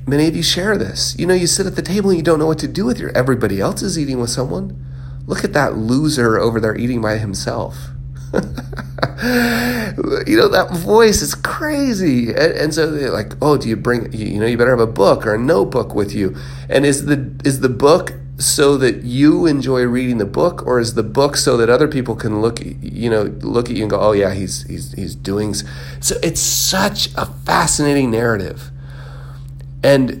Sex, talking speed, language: male, 210 wpm, English